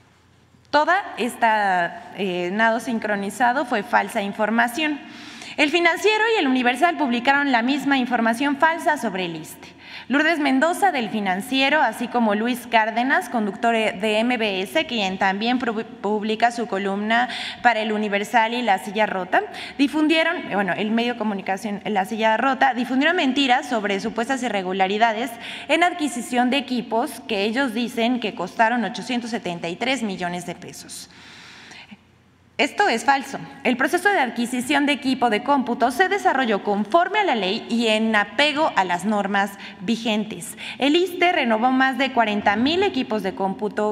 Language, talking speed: Spanish, 145 wpm